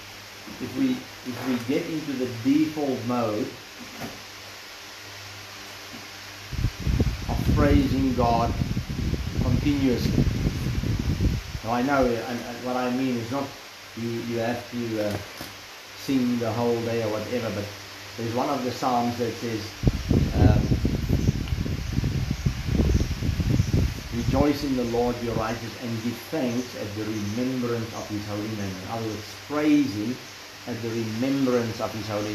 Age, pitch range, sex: 40-59, 105-125 Hz, male